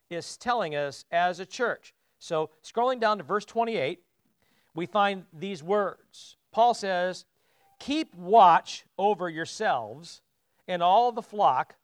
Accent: American